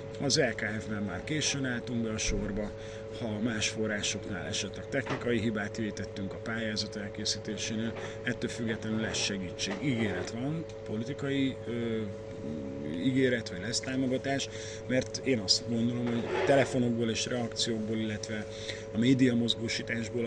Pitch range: 110-120 Hz